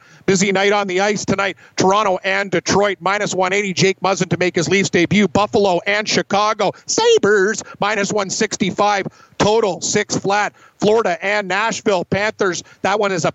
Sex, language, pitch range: male, English, 185-210 Hz